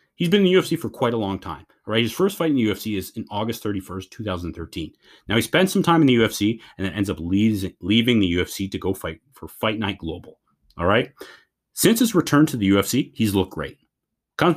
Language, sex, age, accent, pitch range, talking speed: English, male, 30-49, American, 95-130 Hz, 240 wpm